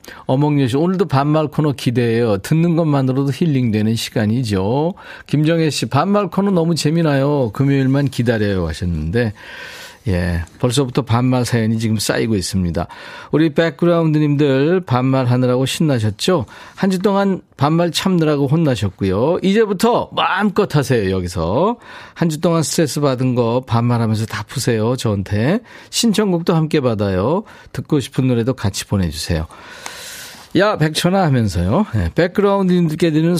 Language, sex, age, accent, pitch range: Korean, male, 40-59, native, 120-170 Hz